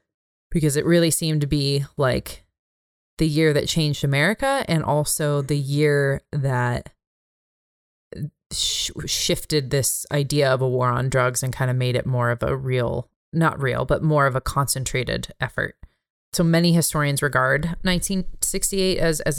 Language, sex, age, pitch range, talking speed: English, female, 20-39, 130-160 Hz, 155 wpm